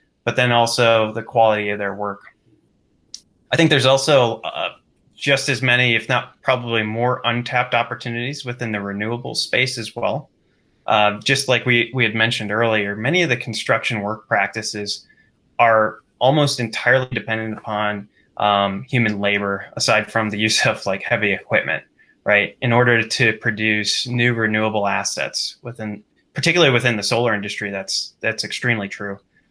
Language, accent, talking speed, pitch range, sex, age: English, American, 155 wpm, 105-125 Hz, male, 20-39